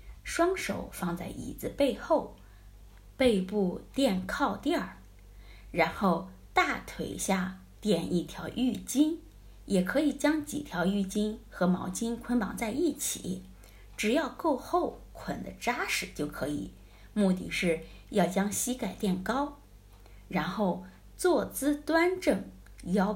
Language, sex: Chinese, female